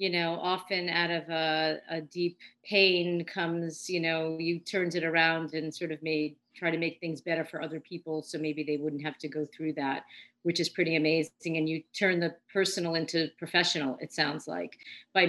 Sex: female